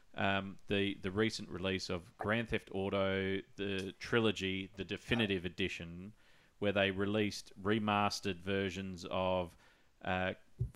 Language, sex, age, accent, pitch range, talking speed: English, male, 30-49, Australian, 95-105 Hz, 115 wpm